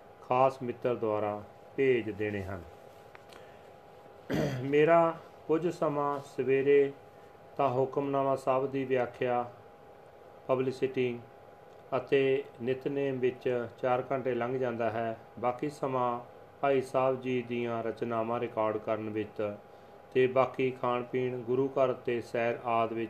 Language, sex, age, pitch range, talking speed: Punjabi, male, 40-59, 115-135 Hz, 110 wpm